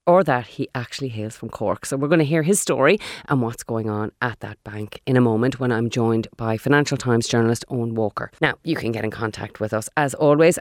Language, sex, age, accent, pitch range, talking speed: English, female, 30-49, Irish, 125-160 Hz, 245 wpm